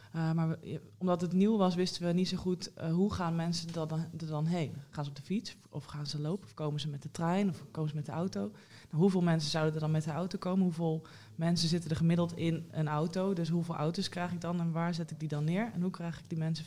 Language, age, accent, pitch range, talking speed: Dutch, 20-39, Dutch, 150-170 Hz, 280 wpm